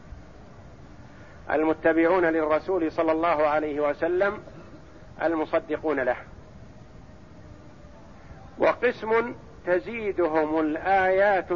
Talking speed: 55 wpm